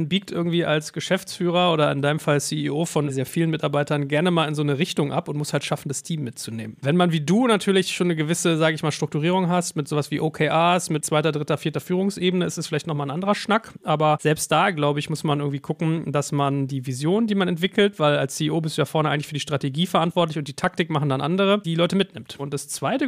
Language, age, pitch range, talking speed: German, 40-59, 150-180 Hz, 250 wpm